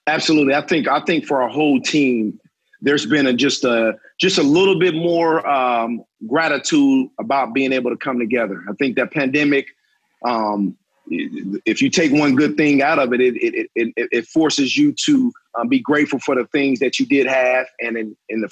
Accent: American